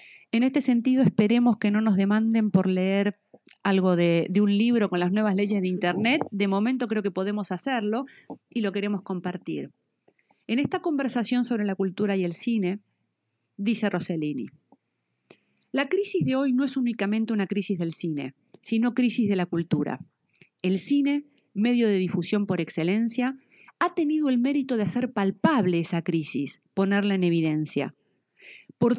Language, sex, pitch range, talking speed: Spanish, female, 190-250 Hz, 160 wpm